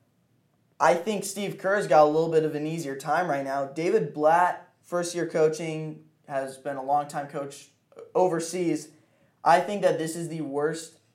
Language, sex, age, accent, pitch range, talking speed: English, male, 20-39, American, 140-160 Hz, 165 wpm